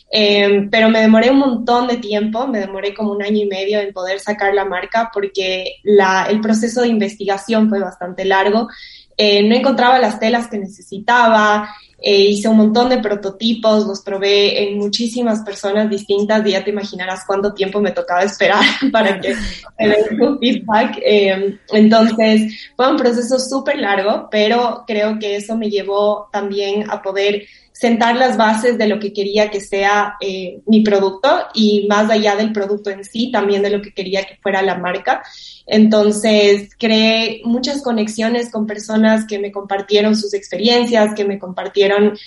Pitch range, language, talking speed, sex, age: 200-225 Hz, Spanish, 170 wpm, female, 10-29